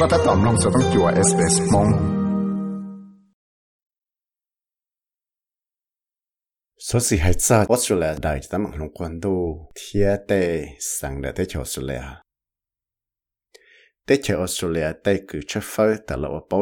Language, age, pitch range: Malay, 60-79, 80-115 Hz